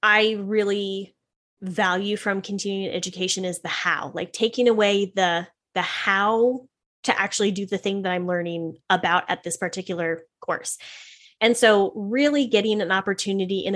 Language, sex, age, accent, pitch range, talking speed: English, female, 10-29, American, 190-235 Hz, 155 wpm